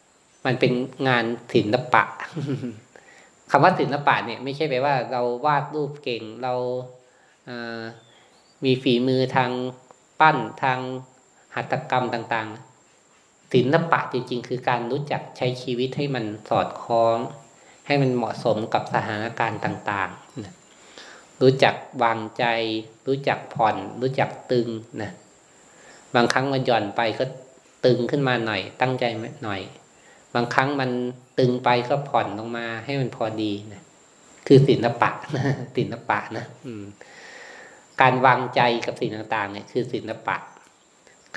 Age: 20-39